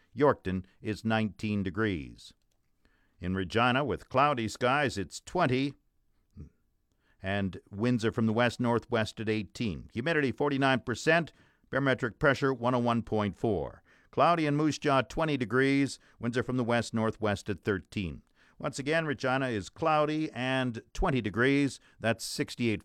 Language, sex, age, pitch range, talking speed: English, male, 50-69, 110-150 Hz, 125 wpm